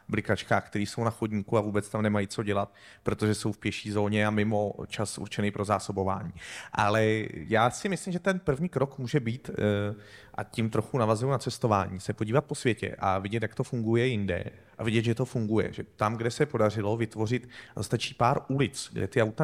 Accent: native